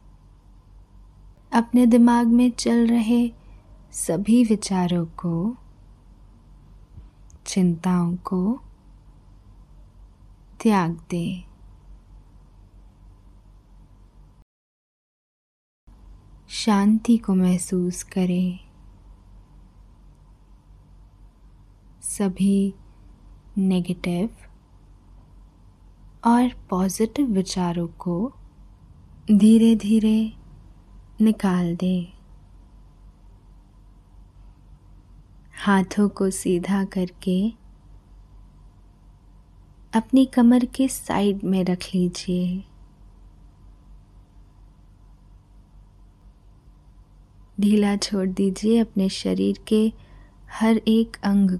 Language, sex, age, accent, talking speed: Hindi, female, 20-39, native, 55 wpm